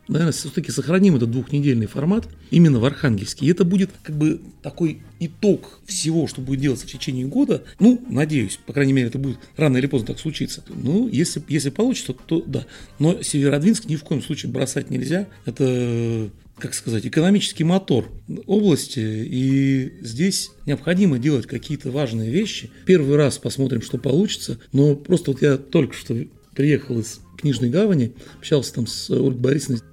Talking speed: 165 wpm